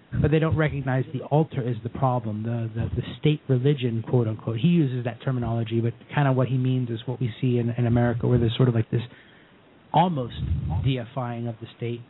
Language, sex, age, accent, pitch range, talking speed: English, male, 30-49, American, 120-140 Hz, 215 wpm